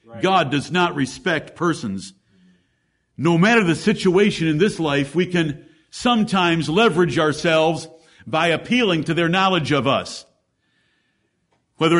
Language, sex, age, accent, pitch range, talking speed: English, male, 50-69, American, 160-210 Hz, 125 wpm